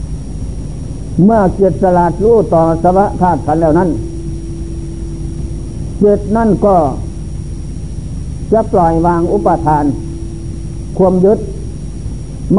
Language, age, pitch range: Thai, 60-79, 150-190 Hz